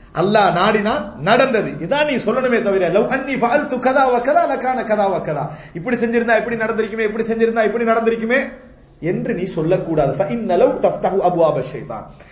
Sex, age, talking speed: male, 30-49, 145 wpm